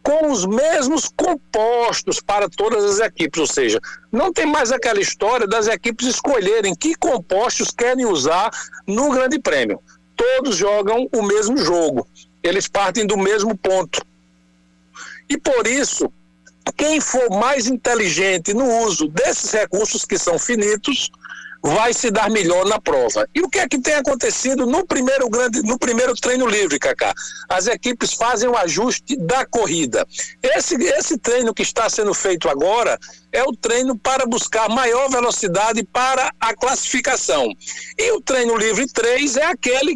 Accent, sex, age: Brazilian, male, 60-79